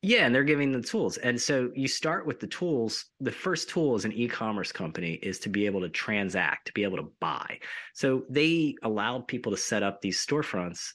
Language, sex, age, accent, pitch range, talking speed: English, male, 30-49, American, 95-125 Hz, 220 wpm